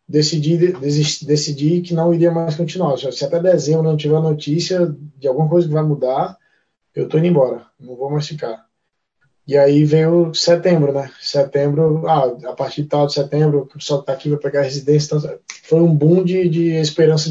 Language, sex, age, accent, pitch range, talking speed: Portuguese, male, 20-39, Brazilian, 140-170 Hz, 195 wpm